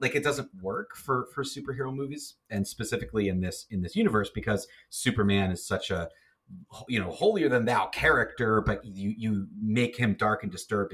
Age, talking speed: 30-49, 175 wpm